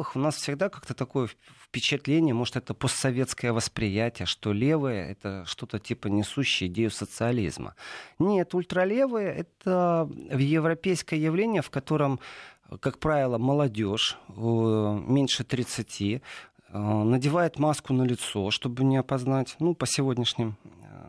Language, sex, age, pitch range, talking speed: Russian, male, 40-59, 115-155 Hz, 115 wpm